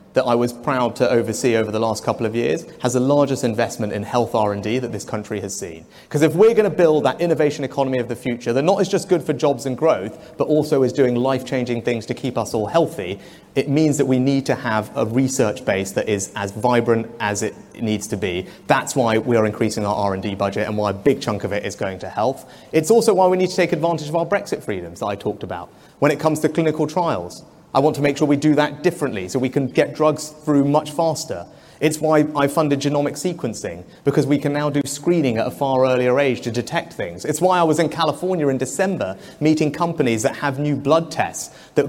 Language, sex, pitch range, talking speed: English, male, 125-155 Hz, 240 wpm